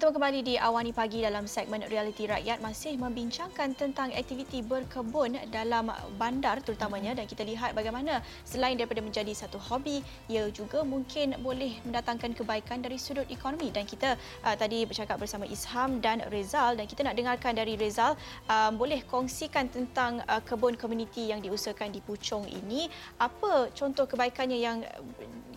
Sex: female